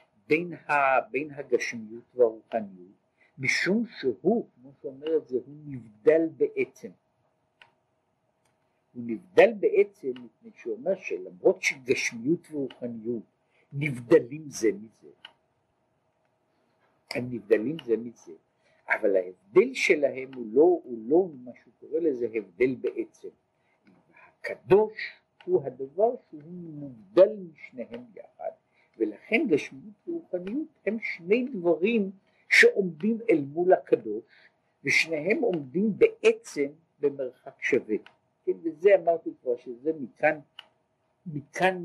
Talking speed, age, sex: 80 wpm, 50-69, male